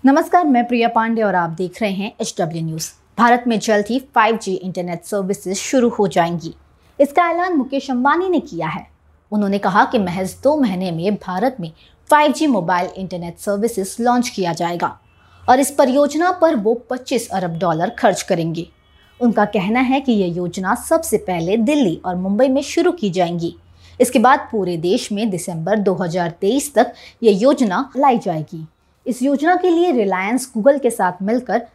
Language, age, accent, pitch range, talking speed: Hindi, 20-39, native, 185-265 Hz, 170 wpm